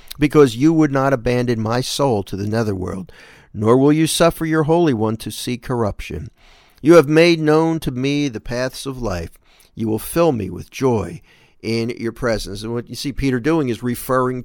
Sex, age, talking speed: male, 50-69, 195 wpm